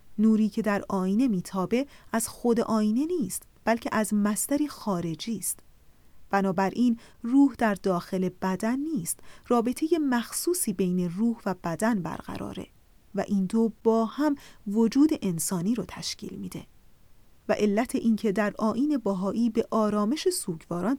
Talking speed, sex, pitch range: 130 wpm, female, 185-240 Hz